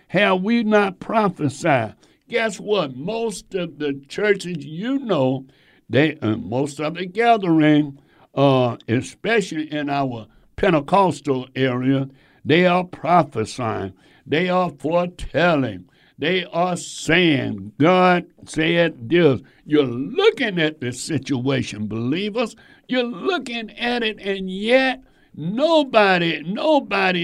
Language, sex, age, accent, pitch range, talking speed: English, male, 60-79, American, 135-195 Hz, 110 wpm